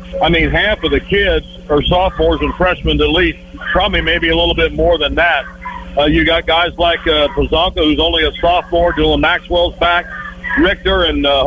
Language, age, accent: English, 50-69, American